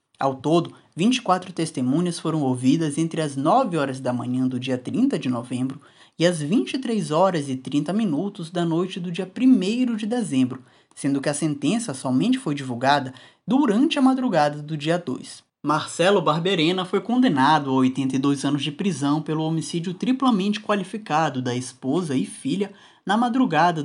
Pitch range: 135-190 Hz